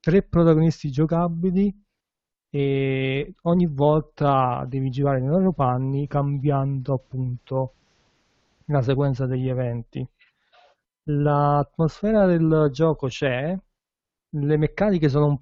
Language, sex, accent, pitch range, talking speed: Italian, male, native, 125-150 Hz, 95 wpm